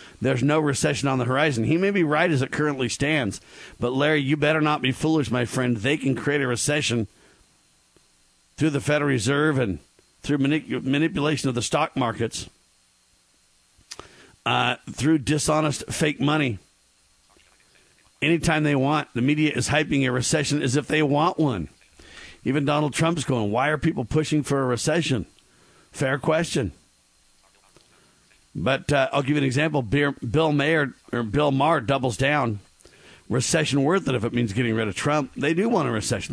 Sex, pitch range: male, 120-150 Hz